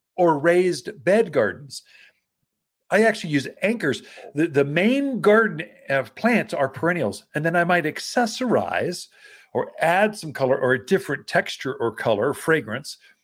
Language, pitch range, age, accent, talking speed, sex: English, 145-210 Hz, 50-69, American, 145 wpm, male